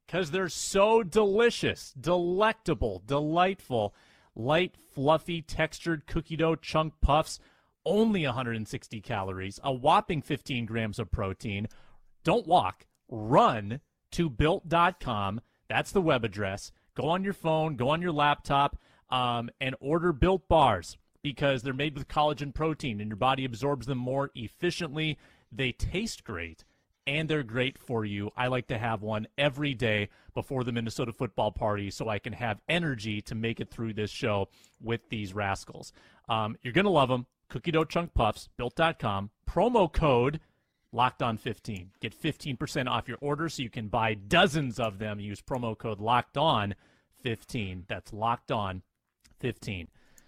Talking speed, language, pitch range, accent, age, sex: 155 wpm, English, 110-155 Hz, American, 30-49, male